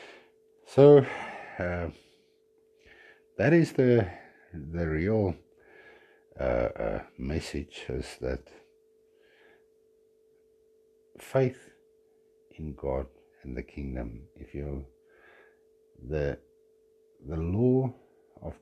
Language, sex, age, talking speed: English, male, 60-79, 75 wpm